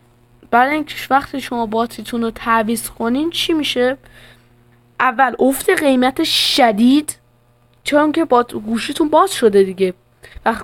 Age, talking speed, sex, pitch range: 10-29, 125 wpm, female, 195-255 Hz